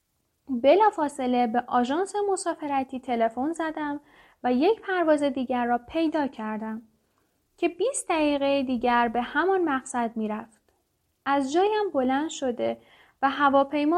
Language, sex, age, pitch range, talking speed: Persian, female, 10-29, 240-315 Hz, 115 wpm